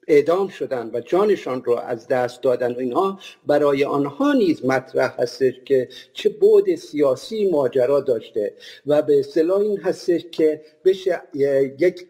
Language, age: Persian, 50-69